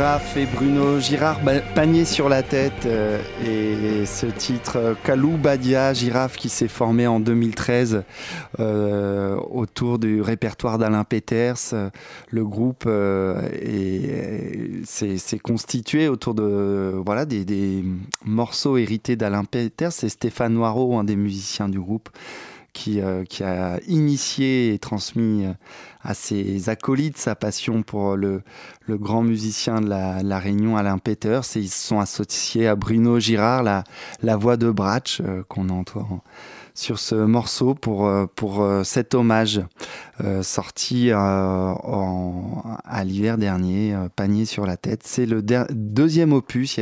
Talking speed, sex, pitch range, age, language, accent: 140 wpm, male, 100-120 Hz, 20-39, French, French